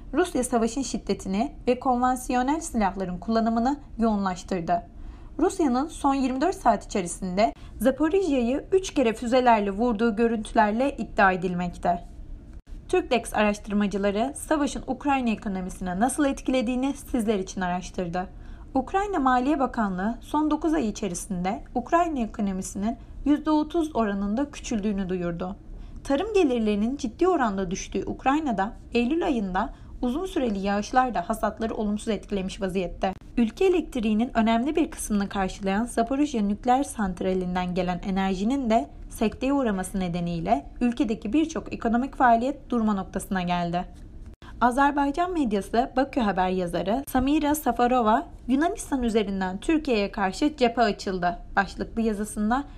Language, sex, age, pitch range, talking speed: Turkish, female, 30-49, 200-270 Hz, 110 wpm